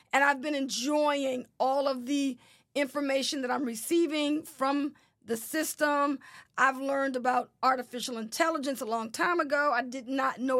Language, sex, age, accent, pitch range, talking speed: English, female, 40-59, American, 255-295 Hz, 155 wpm